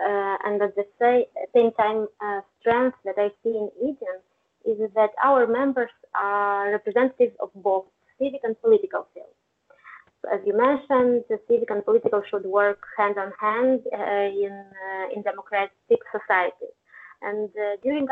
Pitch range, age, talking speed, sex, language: 205-265 Hz, 20-39, 150 wpm, female, English